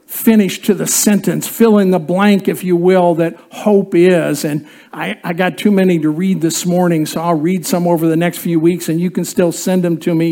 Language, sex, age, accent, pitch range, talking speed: English, male, 50-69, American, 165-270 Hz, 240 wpm